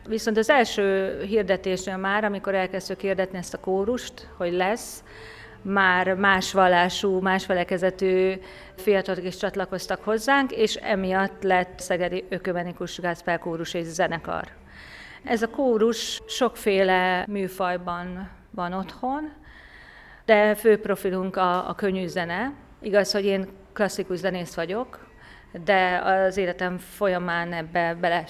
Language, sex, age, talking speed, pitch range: Hungarian, female, 40-59, 120 wpm, 180-220 Hz